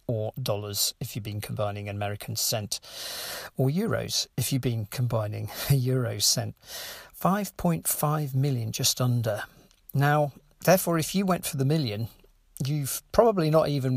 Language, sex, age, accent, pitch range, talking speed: English, male, 50-69, British, 115-140 Hz, 145 wpm